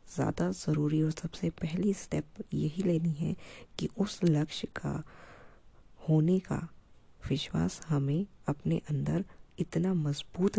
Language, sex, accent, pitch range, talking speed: Hindi, female, native, 145-170 Hz, 120 wpm